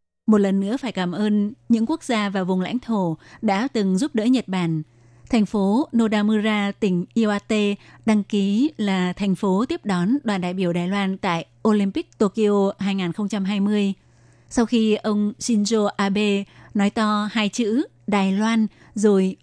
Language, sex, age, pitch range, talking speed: Vietnamese, female, 20-39, 195-225 Hz, 160 wpm